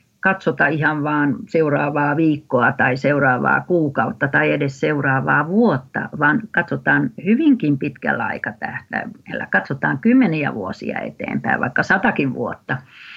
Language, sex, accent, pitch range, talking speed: Finnish, female, native, 150-215 Hz, 115 wpm